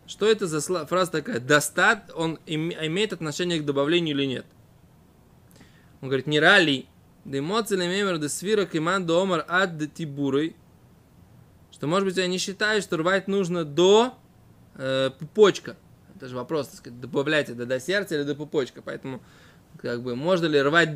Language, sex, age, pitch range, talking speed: Russian, male, 20-39, 150-190 Hz, 170 wpm